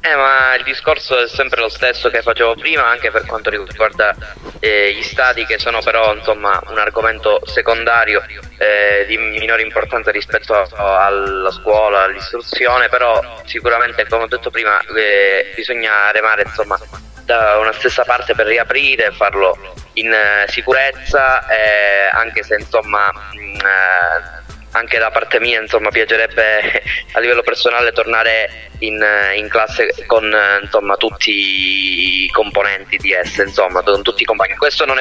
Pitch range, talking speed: 100-130 Hz, 150 wpm